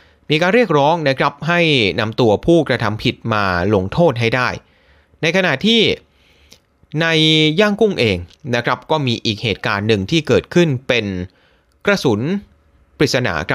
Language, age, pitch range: Thai, 30-49, 105-155 Hz